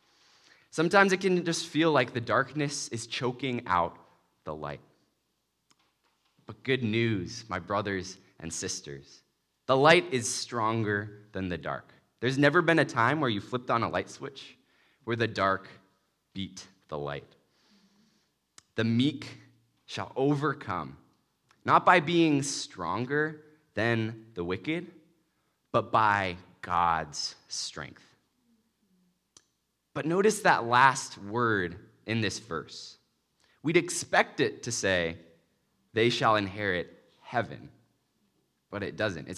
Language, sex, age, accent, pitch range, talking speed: English, male, 20-39, American, 95-150 Hz, 125 wpm